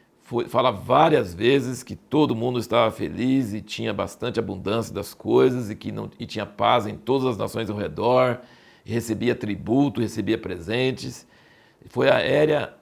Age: 60-79